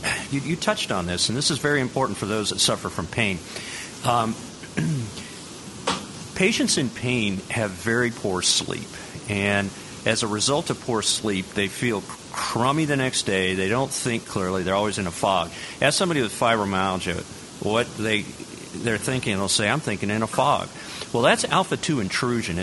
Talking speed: 170 wpm